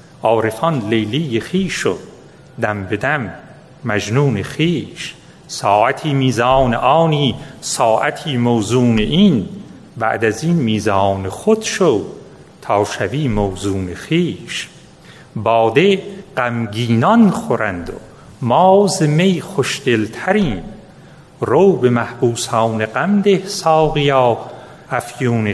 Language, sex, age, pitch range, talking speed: Persian, male, 40-59, 115-170 Hz, 85 wpm